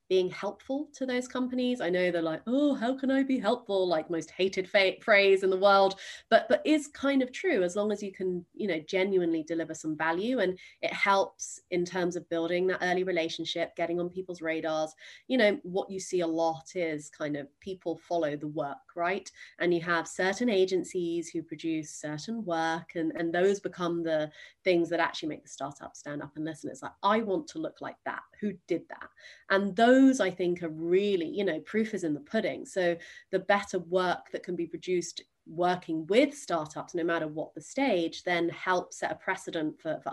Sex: female